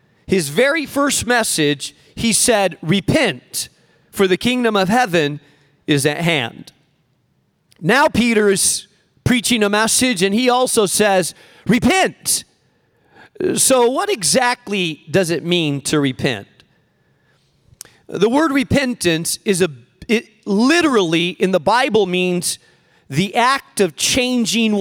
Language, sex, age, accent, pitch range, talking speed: English, male, 40-59, American, 175-240 Hz, 120 wpm